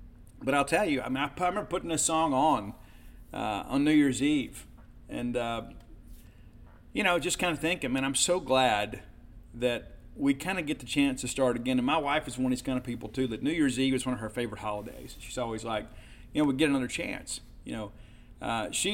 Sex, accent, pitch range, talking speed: male, American, 120-160 Hz, 230 wpm